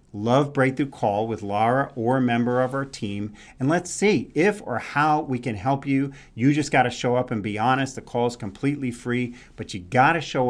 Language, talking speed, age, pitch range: English, 230 wpm, 40-59, 110-135 Hz